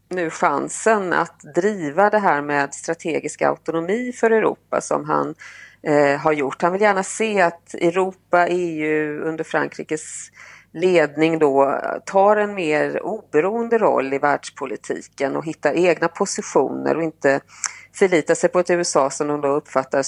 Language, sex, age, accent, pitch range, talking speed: Swedish, female, 40-59, native, 155-190 Hz, 145 wpm